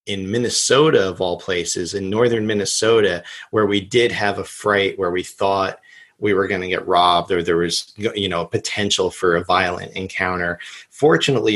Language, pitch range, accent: English, 95-110 Hz, American